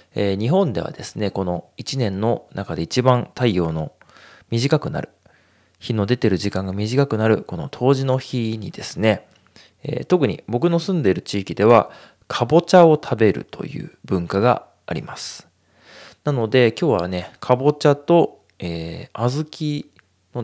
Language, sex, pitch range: Japanese, male, 95-145 Hz